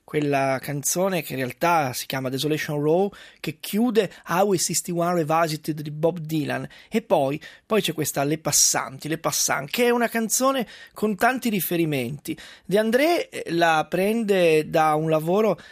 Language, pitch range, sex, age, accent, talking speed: Italian, 155-200 Hz, male, 20-39, native, 155 wpm